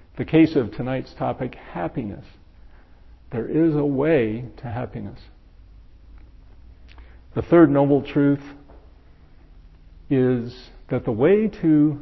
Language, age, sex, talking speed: English, 50-69, male, 105 wpm